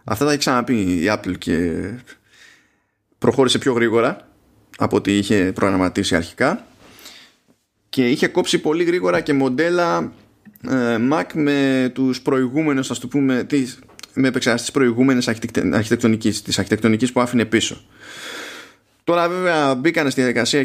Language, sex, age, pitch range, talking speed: Greek, male, 20-39, 105-140 Hz, 130 wpm